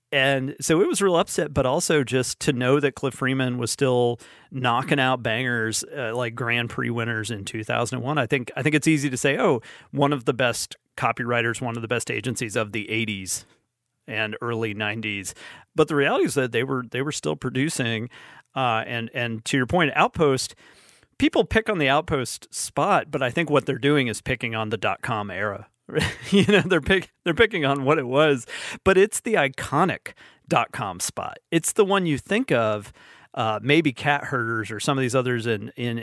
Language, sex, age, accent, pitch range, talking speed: English, male, 40-59, American, 115-155 Hz, 200 wpm